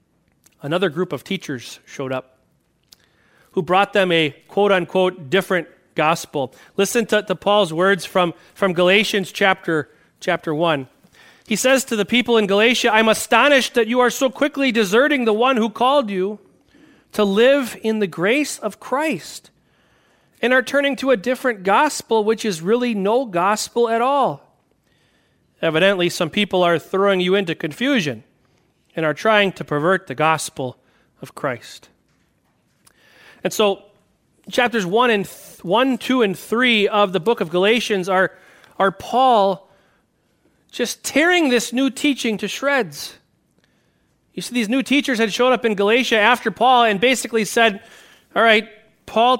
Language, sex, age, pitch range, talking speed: English, male, 40-59, 185-240 Hz, 150 wpm